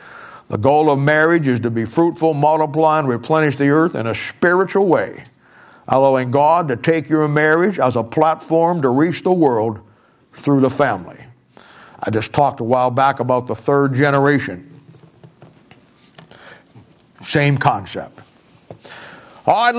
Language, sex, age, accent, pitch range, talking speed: English, male, 60-79, American, 120-145 Hz, 145 wpm